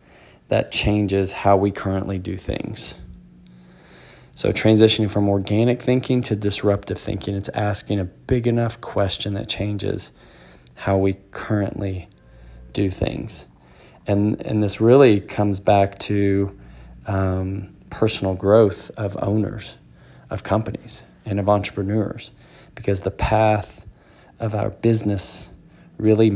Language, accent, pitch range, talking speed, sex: English, American, 95-110 Hz, 120 wpm, male